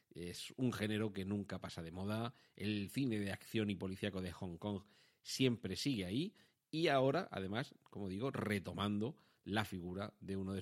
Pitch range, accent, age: 95-125 Hz, Spanish, 40-59